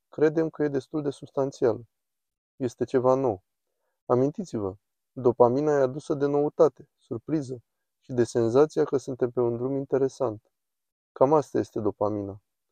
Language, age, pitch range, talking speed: Romanian, 20-39, 115-135 Hz, 135 wpm